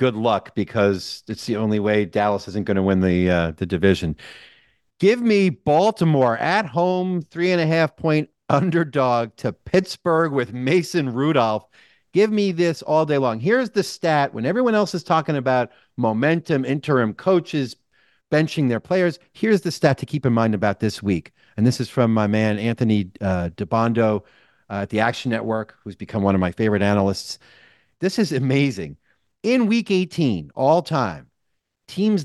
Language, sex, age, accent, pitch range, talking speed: English, male, 40-59, American, 115-175 Hz, 175 wpm